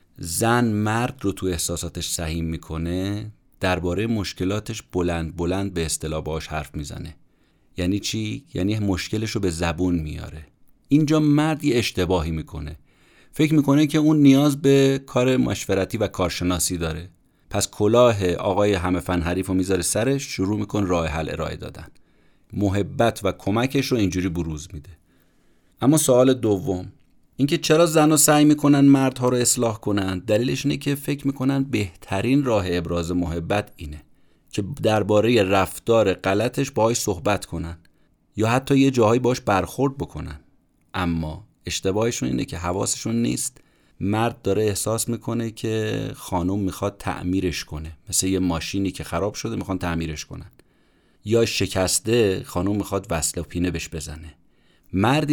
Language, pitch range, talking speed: Persian, 85-120 Hz, 140 wpm